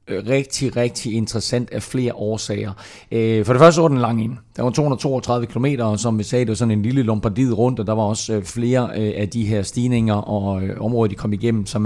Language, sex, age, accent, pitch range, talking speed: Danish, male, 30-49, native, 105-125 Hz, 220 wpm